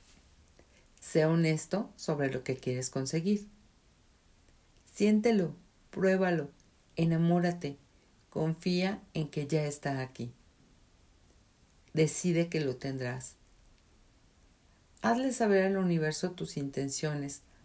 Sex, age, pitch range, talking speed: female, 50-69, 130-185 Hz, 90 wpm